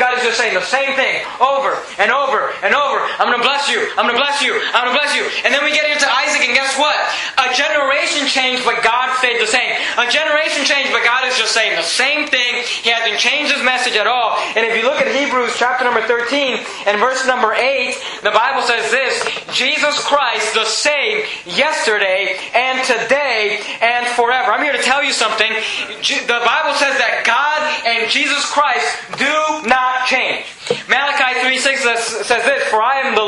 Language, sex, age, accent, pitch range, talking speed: English, male, 20-39, American, 235-280 Hz, 200 wpm